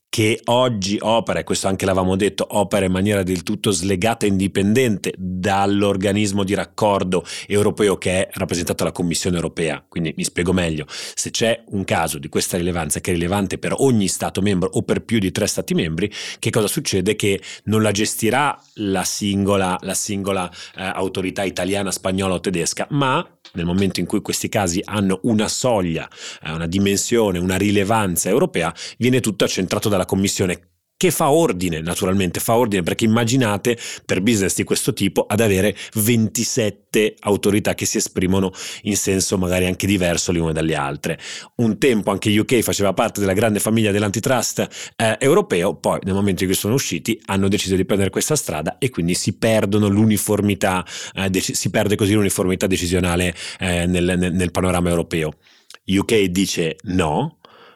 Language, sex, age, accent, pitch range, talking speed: Italian, male, 30-49, native, 90-105 Hz, 170 wpm